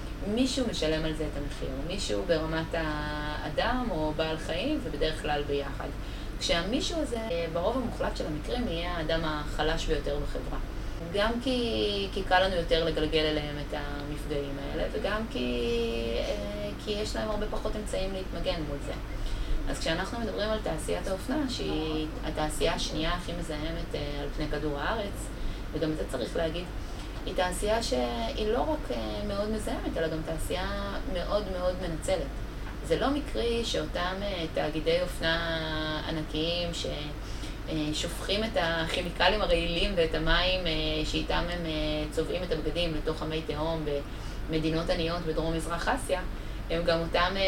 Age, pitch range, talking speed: 20-39, 150-175 Hz, 140 wpm